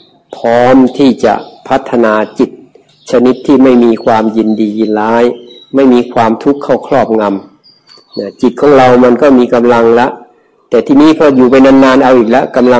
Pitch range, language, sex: 110-130 Hz, Thai, male